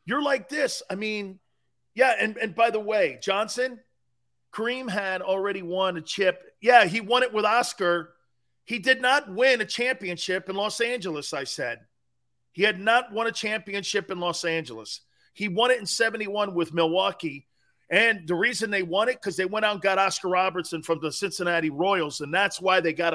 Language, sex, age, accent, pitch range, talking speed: English, male, 40-59, American, 155-215 Hz, 190 wpm